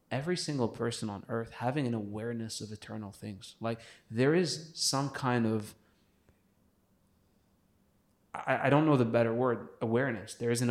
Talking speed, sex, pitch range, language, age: 155 wpm, male, 105-120 Hz, English, 30-49